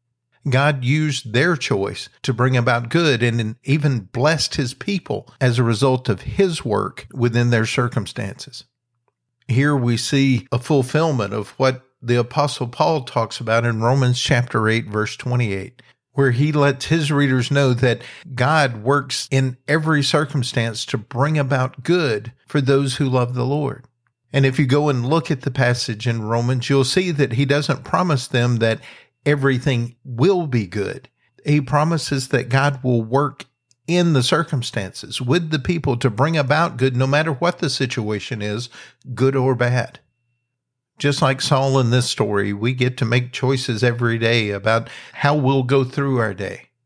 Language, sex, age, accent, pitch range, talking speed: English, male, 50-69, American, 120-145 Hz, 165 wpm